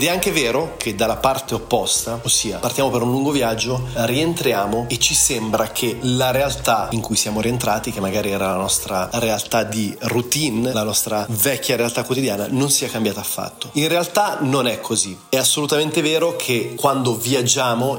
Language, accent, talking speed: Italian, native, 175 wpm